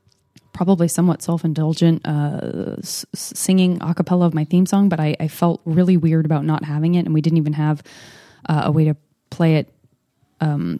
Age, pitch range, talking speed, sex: 20-39, 155-195 Hz, 195 wpm, female